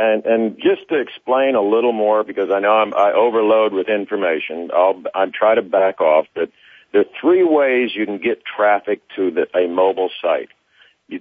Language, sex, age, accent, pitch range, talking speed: English, male, 50-69, American, 100-125 Hz, 195 wpm